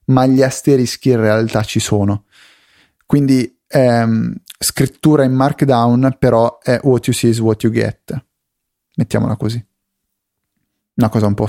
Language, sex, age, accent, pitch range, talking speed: Italian, male, 30-49, native, 110-140 Hz, 140 wpm